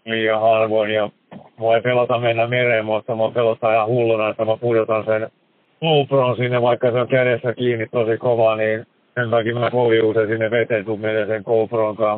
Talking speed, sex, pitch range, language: 175 wpm, male, 110-120 Hz, Finnish